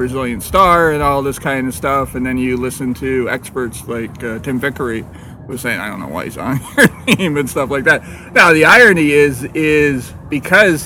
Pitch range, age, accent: 125-140 Hz, 40-59, American